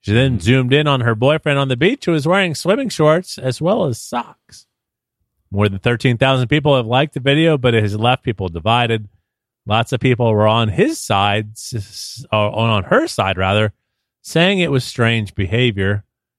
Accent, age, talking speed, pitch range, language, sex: American, 30-49, 180 wpm, 105-135 Hz, English, male